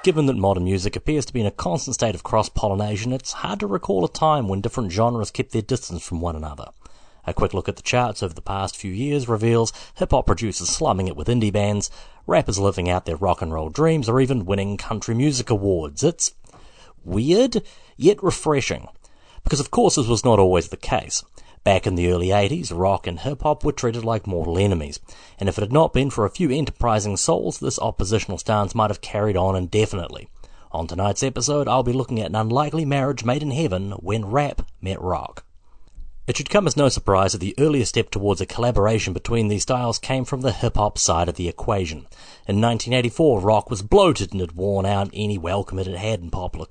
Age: 40-59